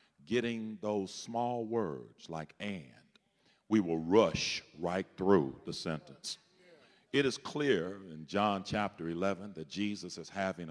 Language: English